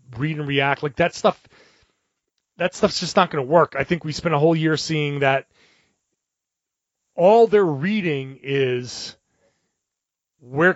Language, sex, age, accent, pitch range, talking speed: English, male, 30-49, American, 130-165 Hz, 150 wpm